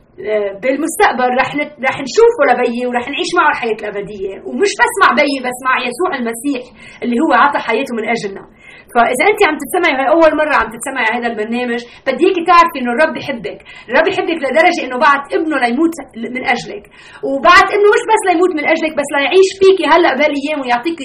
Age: 30-49